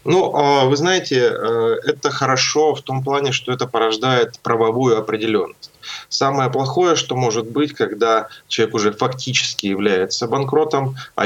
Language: Russian